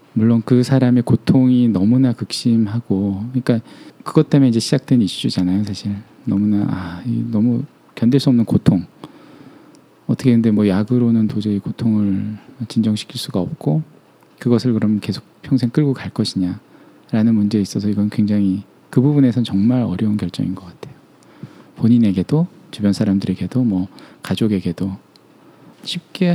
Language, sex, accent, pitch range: Korean, male, native, 100-130 Hz